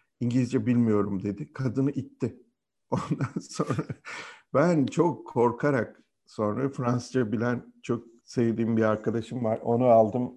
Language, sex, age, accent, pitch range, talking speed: Turkish, male, 50-69, native, 105-125 Hz, 115 wpm